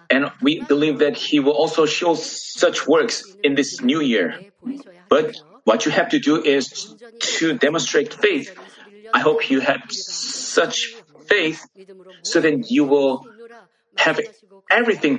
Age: 30-49